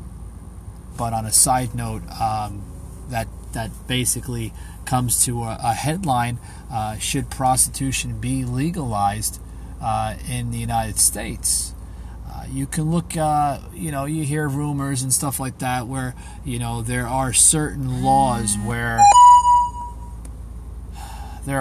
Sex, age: male, 30-49